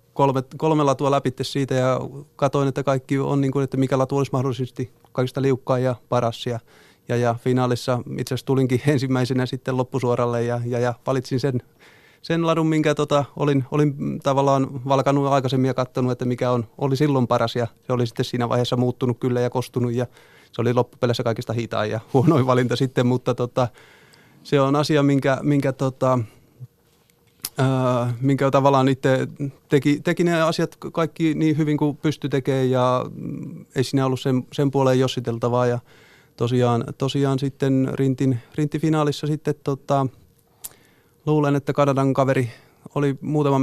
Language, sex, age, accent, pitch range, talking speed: Finnish, male, 30-49, native, 125-140 Hz, 160 wpm